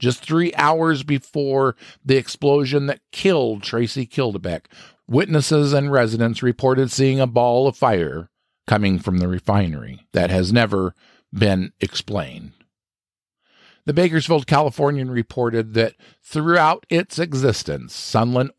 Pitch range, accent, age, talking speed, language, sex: 105-150 Hz, American, 50-69, 120 wpm, English, male